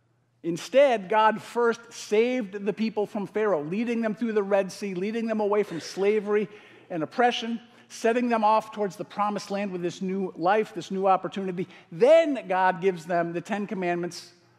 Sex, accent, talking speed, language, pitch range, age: male, American, 175 wpm, English, 175-220 Hz, 50-69